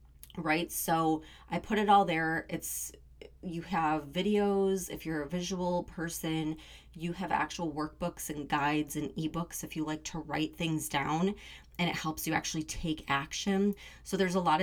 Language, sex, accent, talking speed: English, female, American, 170 wpm